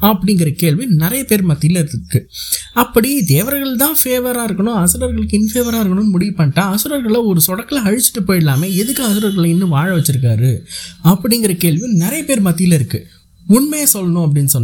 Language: Tamil